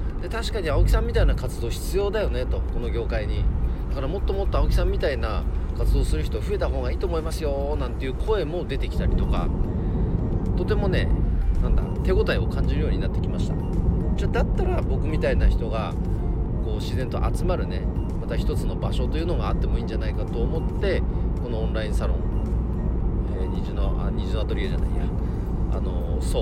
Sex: male